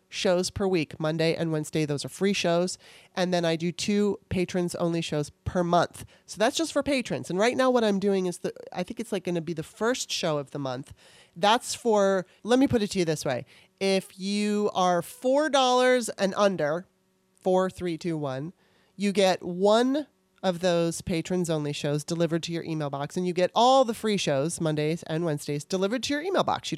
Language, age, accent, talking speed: English, 30-49, American, 215 wpm